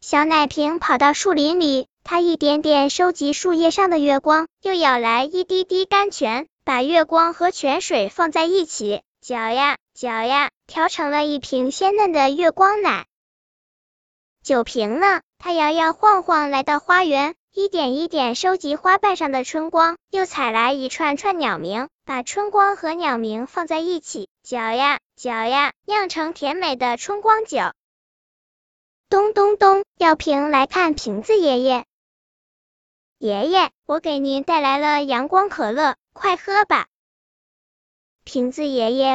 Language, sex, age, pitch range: Chinese, male, 10-29, 270-360 Hz